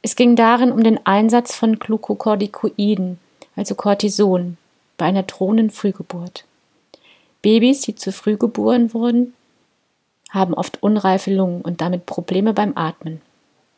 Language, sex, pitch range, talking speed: German, female, 185-225 Hz, 125 wpm